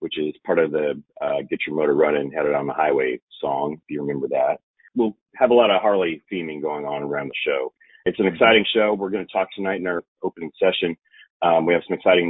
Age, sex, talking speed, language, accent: 30-49, male, 240 wpm, English, American